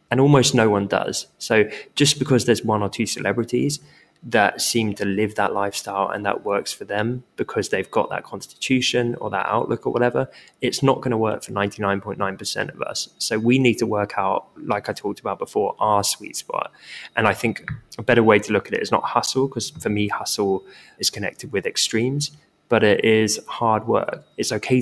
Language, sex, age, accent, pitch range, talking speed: English, male, 20-39, British, 100-120 Hz, 205 wpm